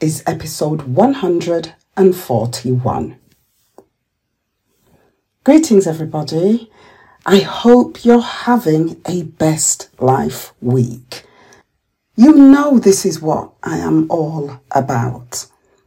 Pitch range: 150-245 Hz